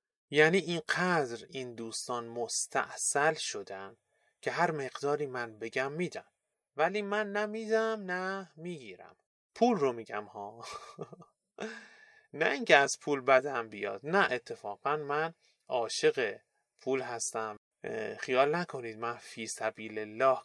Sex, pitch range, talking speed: male, 115-180 Hz, 115 wpm